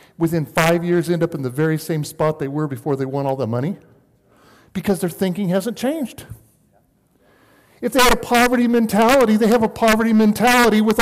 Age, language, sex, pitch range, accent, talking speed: 50-69, English, male, 165-230 Hz, American, 190 wpm